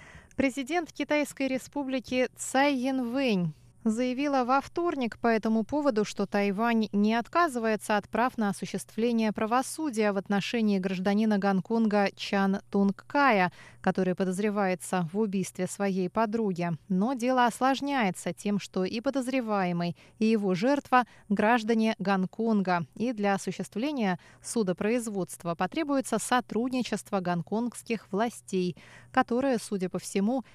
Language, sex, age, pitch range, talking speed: Russian, female, 20-39, 190-245 Hz, 110 wpm